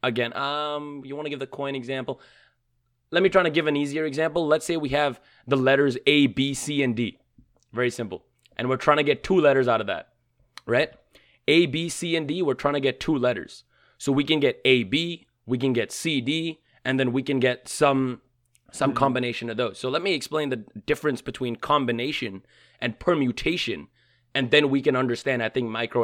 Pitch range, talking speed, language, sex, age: 125-155 Hz, 210 wpm, English, male, 20-39